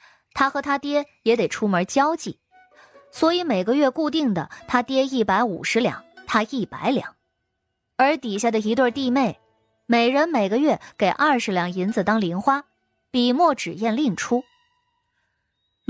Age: 20-39